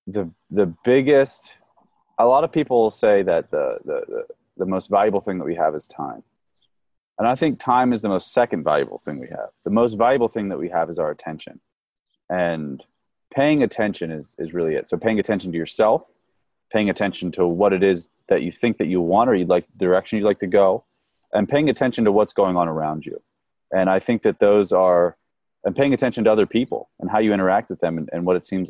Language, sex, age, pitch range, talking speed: English, male, 30-49, 95-130 Hz, 220 wpm